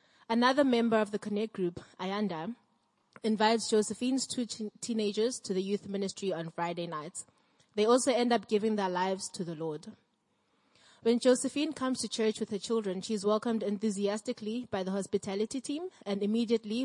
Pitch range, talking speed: 195-235 Hz, 165 wpm